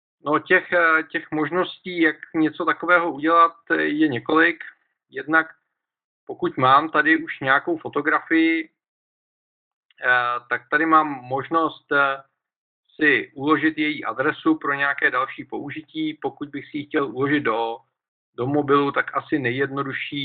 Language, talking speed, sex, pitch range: Czech, 120 wpm, male, 135-170 Hz